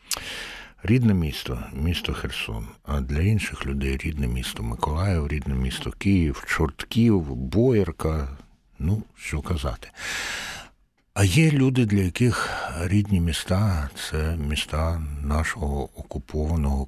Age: 60-79